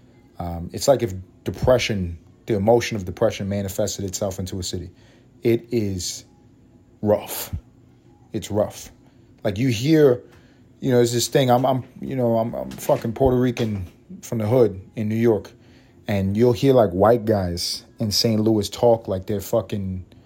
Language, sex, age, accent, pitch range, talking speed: English, male, 30-49, American, 100-120 Hz, 165 wpm